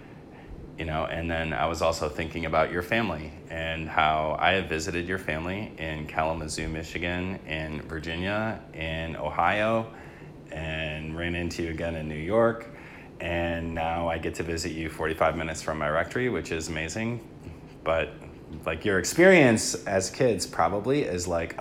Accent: American